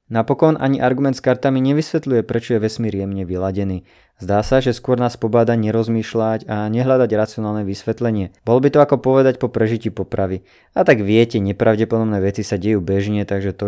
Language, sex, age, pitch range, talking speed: Slovak, male, 20-39, 105-130 Hz, 175 wpm